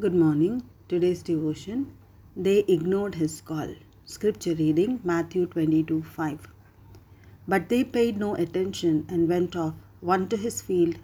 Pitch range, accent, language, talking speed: 155-195 Hz, Indian, English, 135 wpm